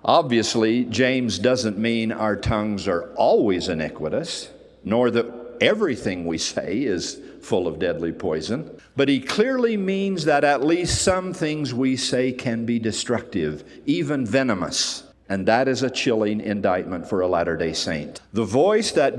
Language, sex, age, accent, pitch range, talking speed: English, male, 60-79, American, 105-160 Hz, 150 wpm